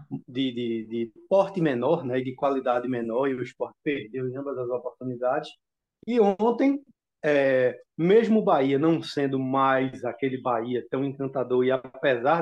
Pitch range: 130-175 Hz